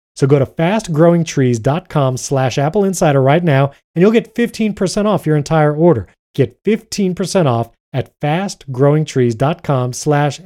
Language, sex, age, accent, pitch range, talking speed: English, male, 30-49, American, 125-165 Hz, 125 wpm